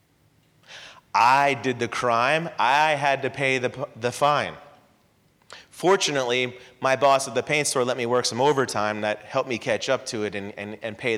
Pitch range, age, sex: 120-160 Hz, 30-49, male